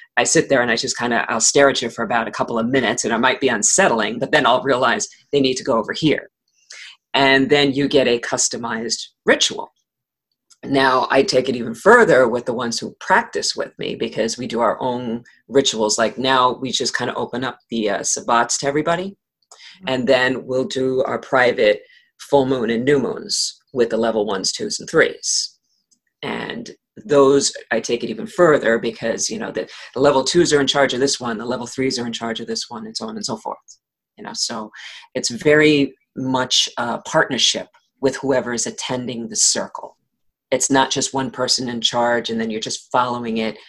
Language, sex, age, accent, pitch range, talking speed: English, female, 40-59, American, 120-145 Hz, 210 wpm